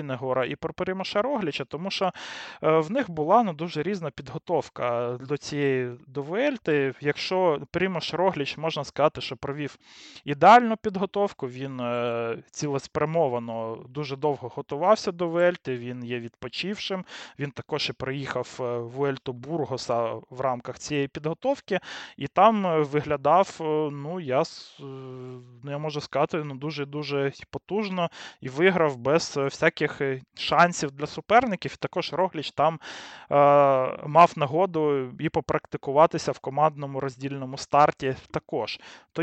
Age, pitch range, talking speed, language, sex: 20-39, 135-175 Hz, 120 wpm, Ukrainian, male